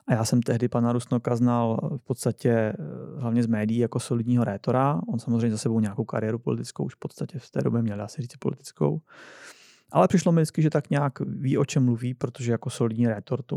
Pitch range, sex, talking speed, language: 115-130 Hz, male, 210 wpm, Czech